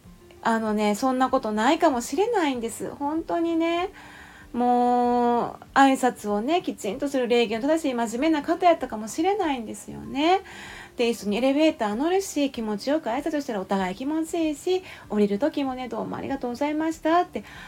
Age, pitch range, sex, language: 30-49, 200-315 Hz, female, Japanese